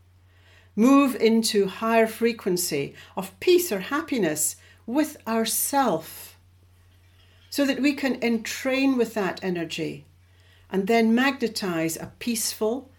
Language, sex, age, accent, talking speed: English, female, 60-79, British, 105 wpm